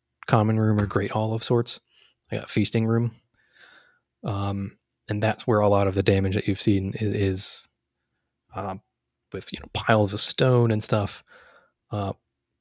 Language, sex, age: English, male, 20-39